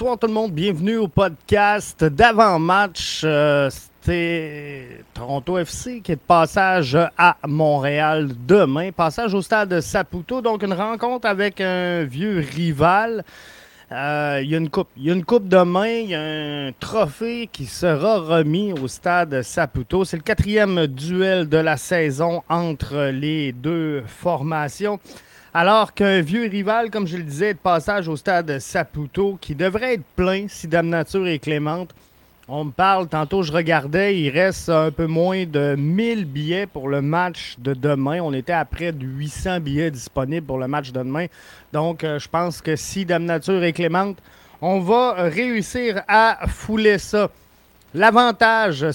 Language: French